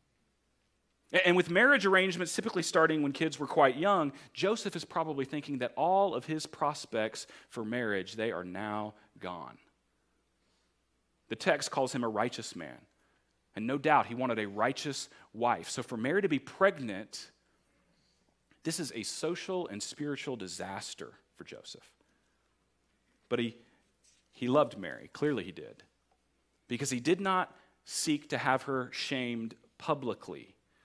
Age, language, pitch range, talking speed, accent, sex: 40-59, English, 105-145 Hz, 145 wpm, American, male